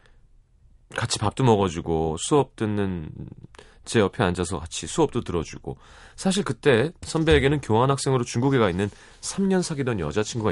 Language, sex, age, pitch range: Korean, male, 30-49, 90-130 Hz